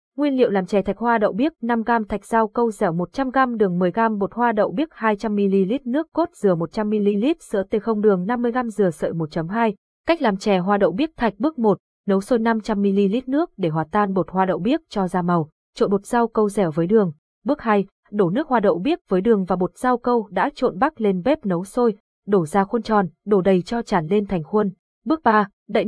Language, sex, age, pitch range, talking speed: Vietnamese, female, 20-39, 190-235 Hz, 225 wpm